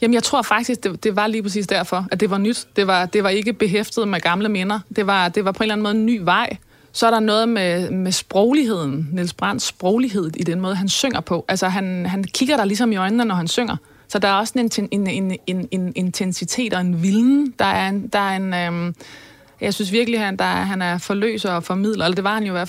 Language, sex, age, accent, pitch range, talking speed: Danish, female, 20-39, native, 180-225 Hz, 265 wpm